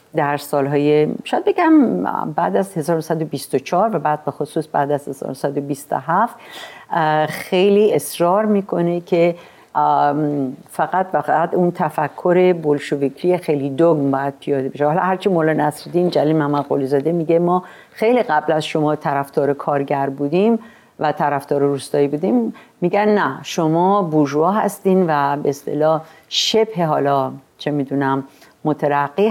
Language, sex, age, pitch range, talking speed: Persian, female, 50-69, 145-195 Hz, 125 wpm